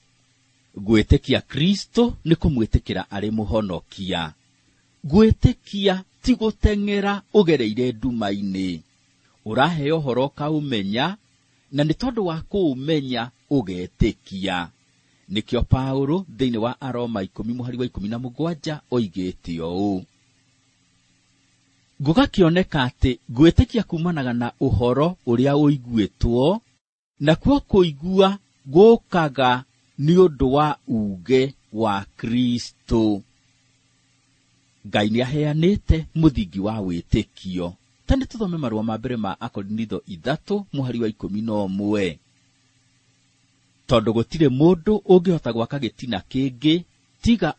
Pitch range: 115-155 Hz